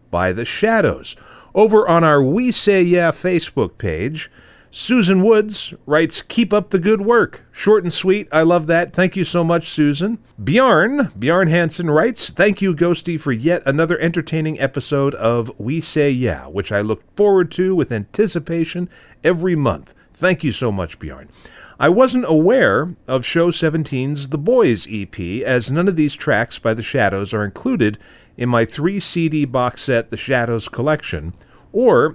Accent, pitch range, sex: American, 115-175 Hz, male